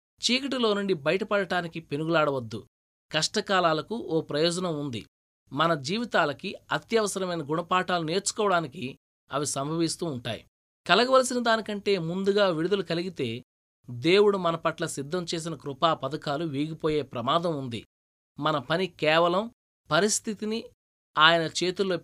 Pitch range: 145-200 Hz